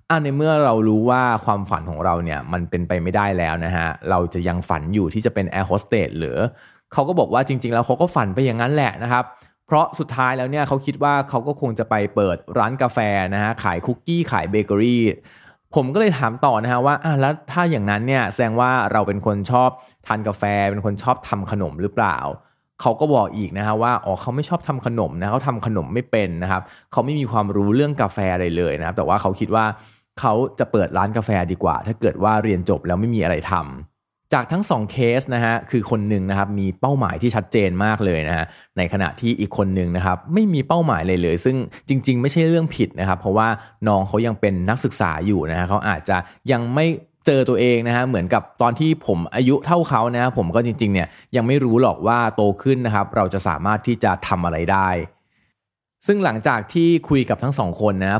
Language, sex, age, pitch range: Thai, male, 20-39, 95-125 Hz